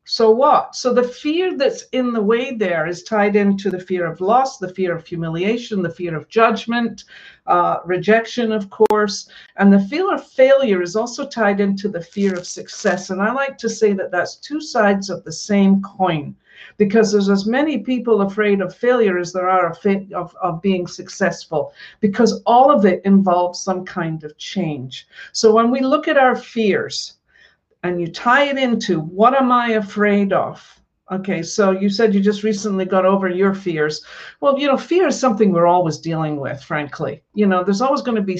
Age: 60-79